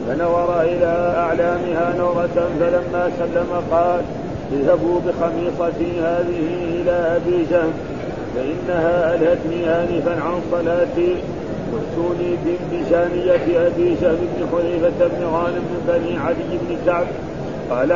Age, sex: 50-69, male